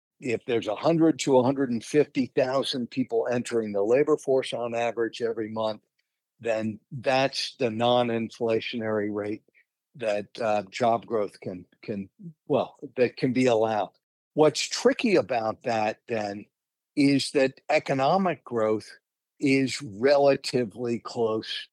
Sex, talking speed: male, 125 wpm